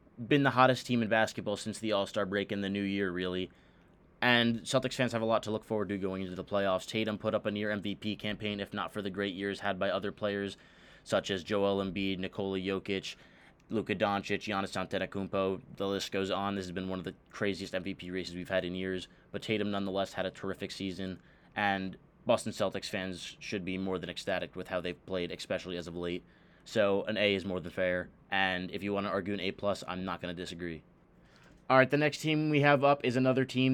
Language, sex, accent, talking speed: English, male, American, 230 wpm